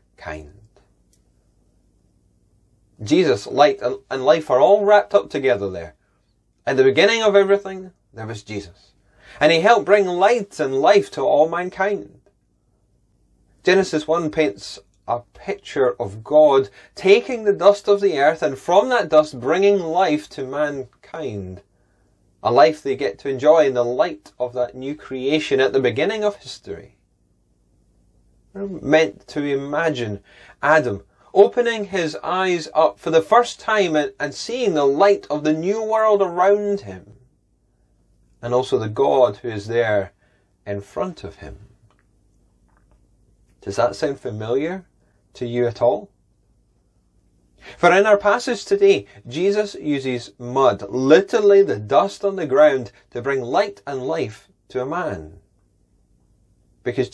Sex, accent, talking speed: male, British, 140 wpm